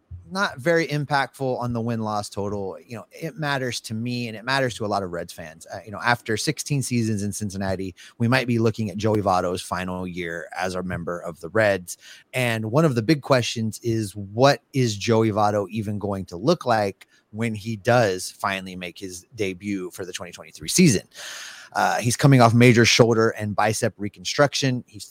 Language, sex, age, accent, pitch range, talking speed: English, male, 30-49, American, 100-135 Hz, 200 wpm